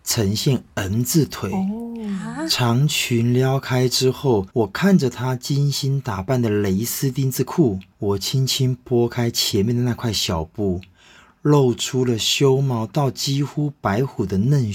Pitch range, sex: 115-140 Hz, male